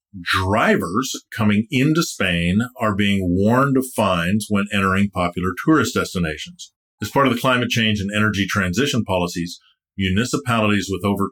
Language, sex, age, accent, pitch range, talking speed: English, male, 50-69, American, 95-115 Hz, 145 wpm